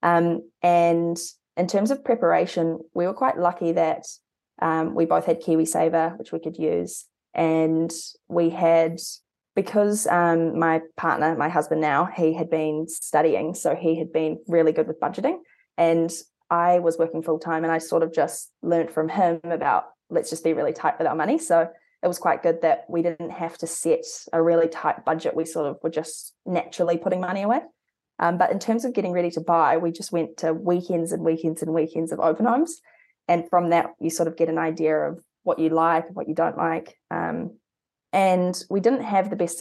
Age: 20-39